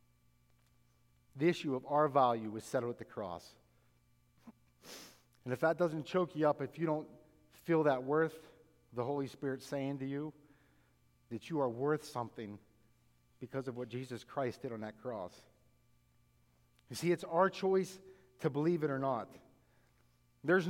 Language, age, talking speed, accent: English, 50-69, 155 wpm, American